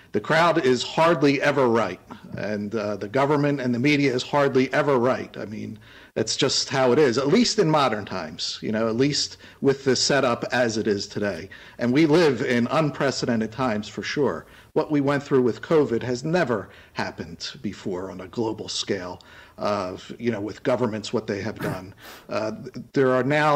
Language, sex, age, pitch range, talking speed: English, male, 50-69, 120-160 Hz, 190 wpm